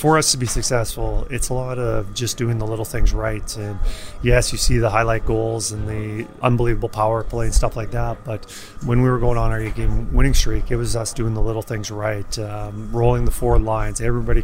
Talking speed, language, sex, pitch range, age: 230 wpm, English, male, 110-125 Hz, 30-49